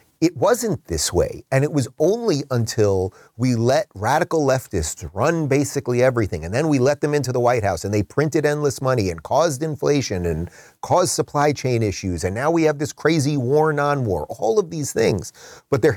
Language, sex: English, male